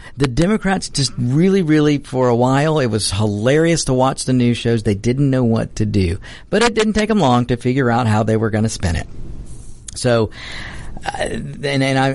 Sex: male